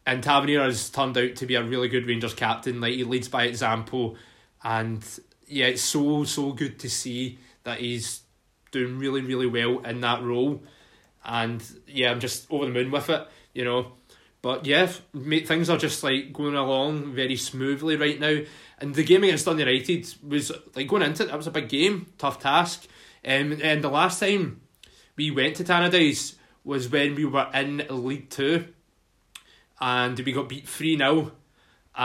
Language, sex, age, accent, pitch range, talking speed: English, male, 20-39, British, 125-150 Hz, 175 wpm